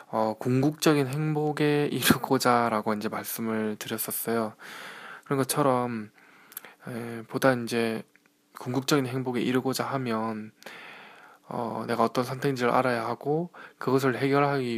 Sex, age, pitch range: male, 20-39, 115-135 Hz